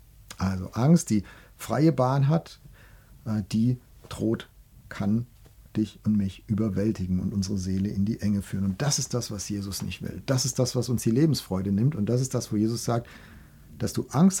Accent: German